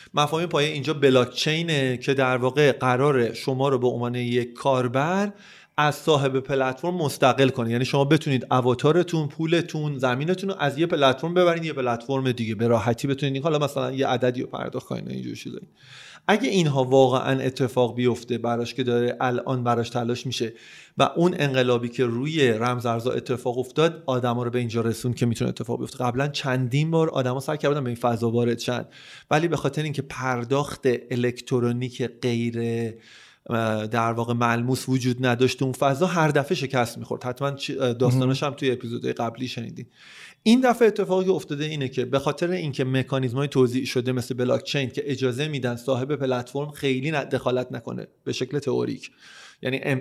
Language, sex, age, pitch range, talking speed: Persian, male, 30-49, 125-150 Hz, 165 wpm